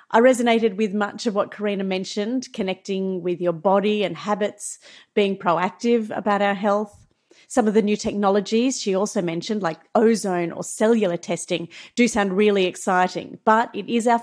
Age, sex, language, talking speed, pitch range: 40-59, female, English, 170 wpm, 185-240 Hz